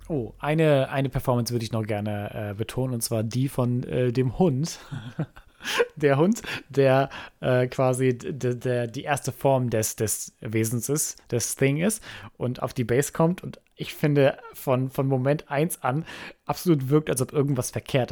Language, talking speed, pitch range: German, 180 wpm, 120-150 Hz